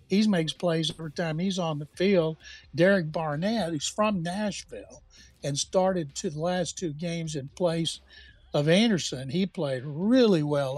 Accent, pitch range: American, 150-185 Hz